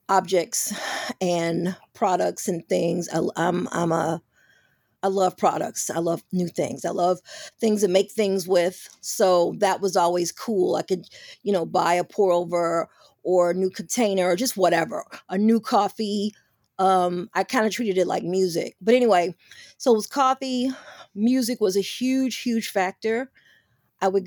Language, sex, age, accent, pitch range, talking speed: English, female, 40-59, American, 180-220 Hz, 170 wpm